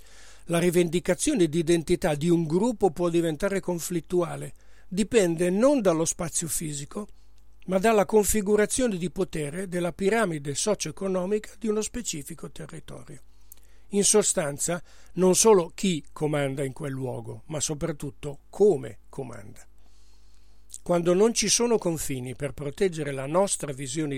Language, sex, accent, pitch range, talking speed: Italian, male, native, 140-190 Hz, 125 wpm